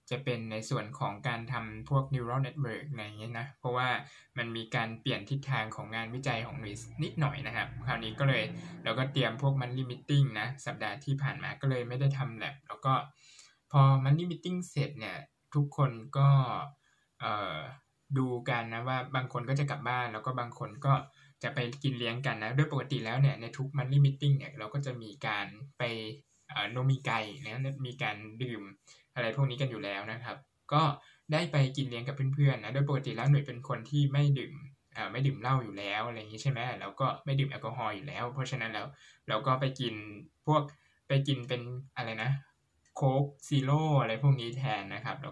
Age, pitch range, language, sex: 20-39, 120-140 Hz, Thai, male